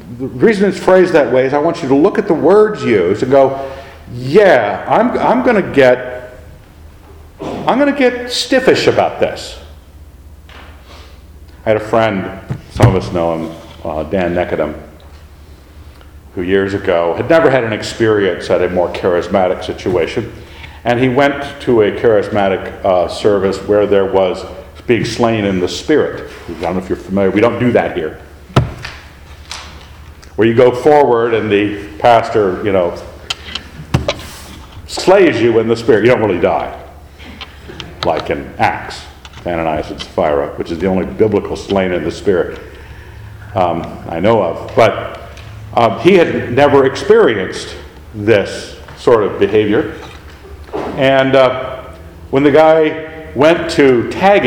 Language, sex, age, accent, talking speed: English, male, 50-69, American, 150 wpm